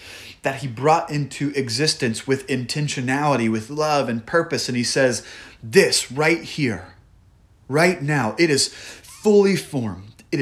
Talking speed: 140 wpm